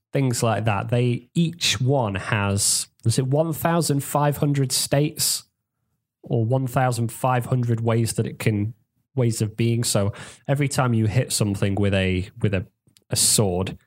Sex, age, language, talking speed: male, 20-39, English, 140 wpm